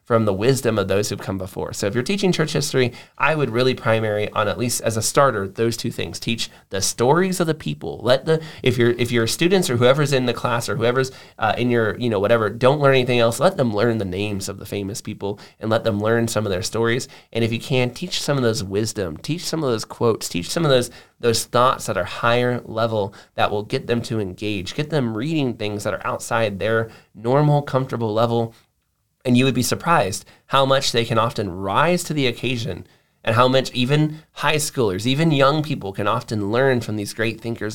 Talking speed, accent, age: 230 wpm, American, 20-39